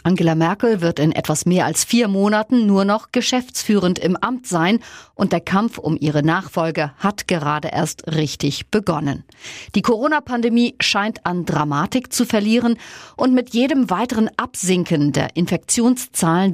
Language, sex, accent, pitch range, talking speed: German, female, German, 165-230 Hz, 145 wpm